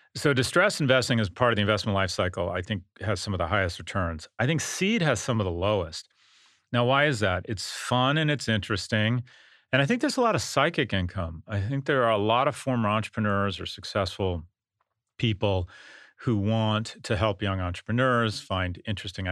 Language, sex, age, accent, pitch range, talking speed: English, male, 40-59, American, 95-115 Hz, 200 wpm